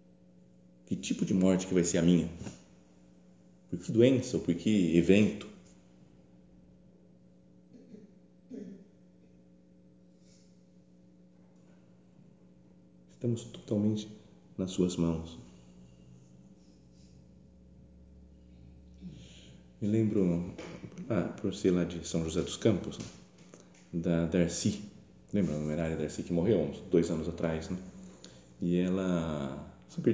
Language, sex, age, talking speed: Portuguese, male, 40-59, 95 wpm